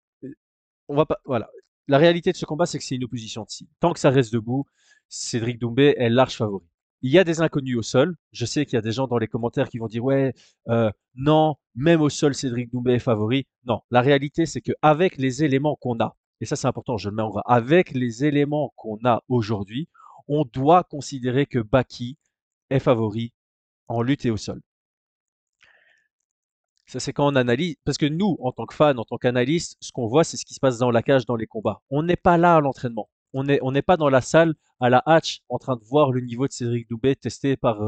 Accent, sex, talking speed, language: French, male, 235 wpm, French